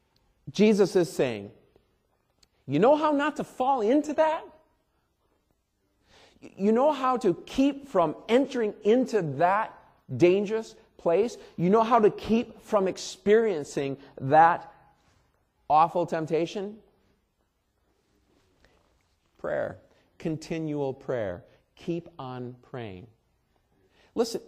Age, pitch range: 40-59, 150-225 Hz